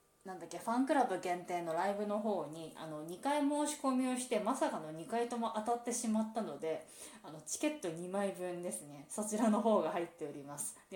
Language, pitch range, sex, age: Japanese, 180-240 Hz, female, 20-39